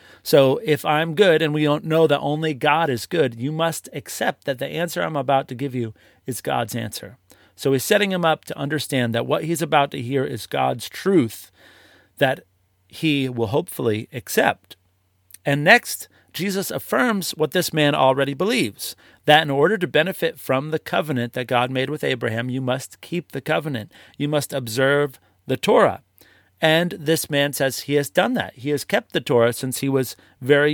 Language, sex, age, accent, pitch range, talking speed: English, male, 40-59, American, 115-150 Hz, 190 wpm